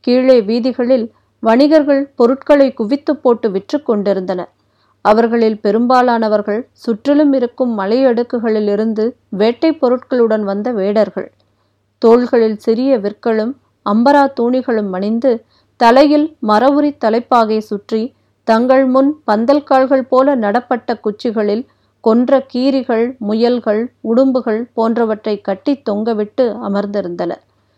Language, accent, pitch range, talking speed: Tamil, native, 210-260 Hz, 85 wpm